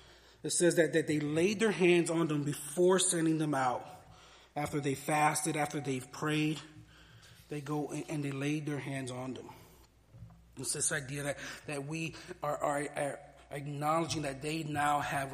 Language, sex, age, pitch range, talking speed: English, male, 30-49, 145-165 Hz, 170 wpm